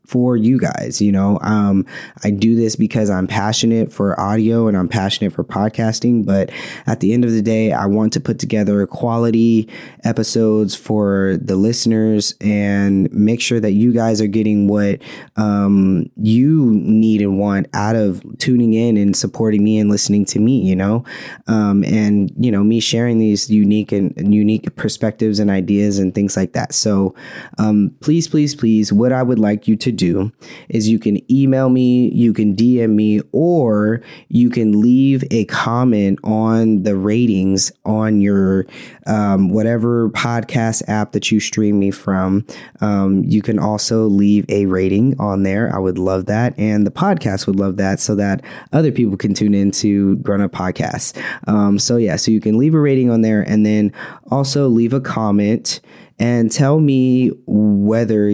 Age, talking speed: 20-39, 180 wpm